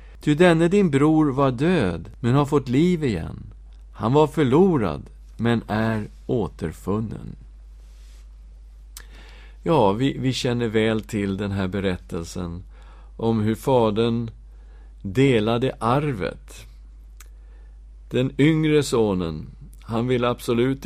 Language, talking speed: English, 105 wpm